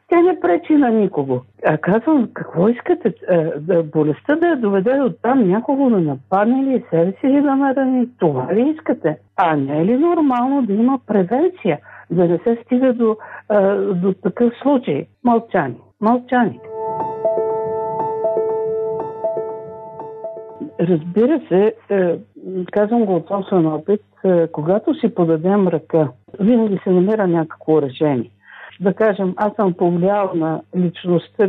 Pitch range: 175-240 Hz